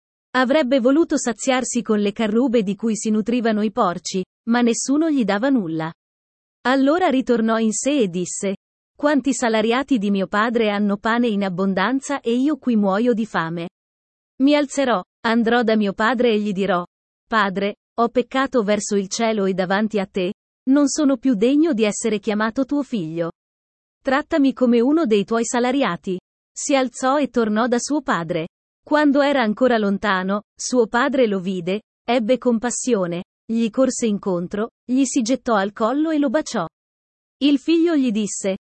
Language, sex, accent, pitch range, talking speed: Italian, female, native, 205-265 Hz, 160 wpm